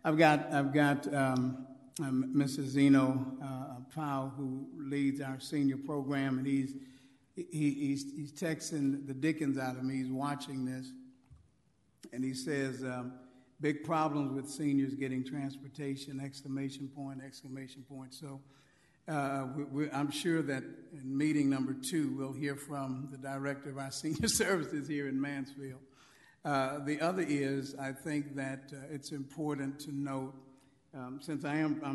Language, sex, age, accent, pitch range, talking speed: English, male, 50-69, American, 135-145 Hz, 150 wpm